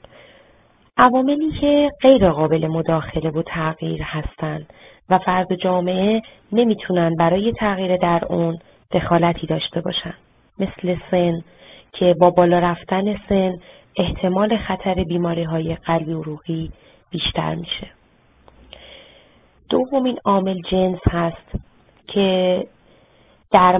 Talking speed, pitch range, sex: 100 wpm, 165-200 Hz, female